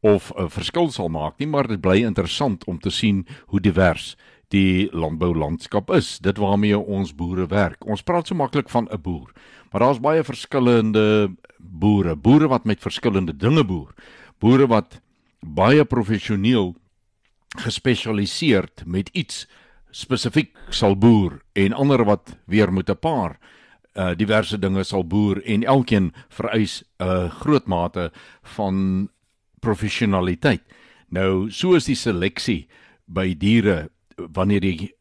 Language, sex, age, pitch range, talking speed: Swedish, male, 60-79, 90-115 Hz, 135 wpm